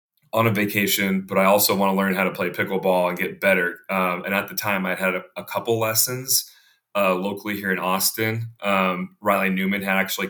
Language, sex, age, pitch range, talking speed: English, male, 30-49, 95-105 Hz, 215 wpm